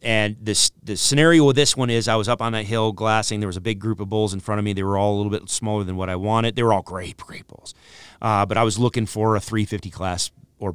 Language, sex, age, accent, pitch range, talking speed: English, male, 30-49, American, 95-115 Hz, 295 wpm